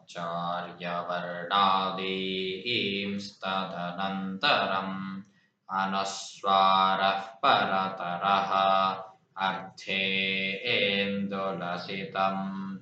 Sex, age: male, 20-39